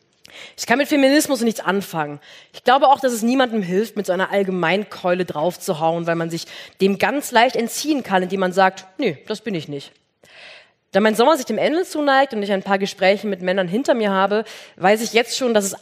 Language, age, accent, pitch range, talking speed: German, 30-49, German, 175-230 Hz, 220 wpm